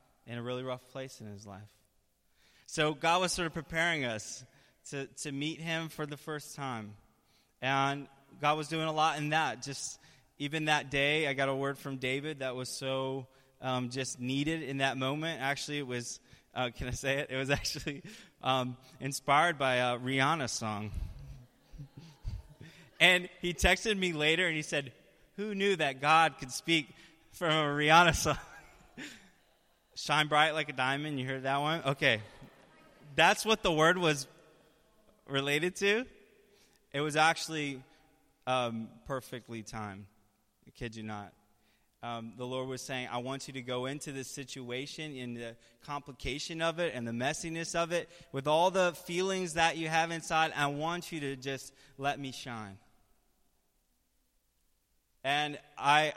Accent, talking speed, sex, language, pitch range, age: American, 165 wpm, male, English, 130-160 Hz, 20-39